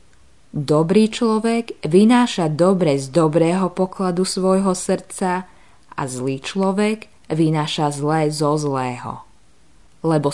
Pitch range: 140-185 Hz